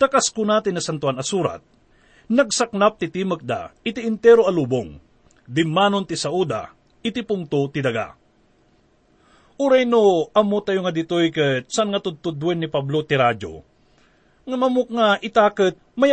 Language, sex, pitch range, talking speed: English, male, 160-220 Hz, 135 wpm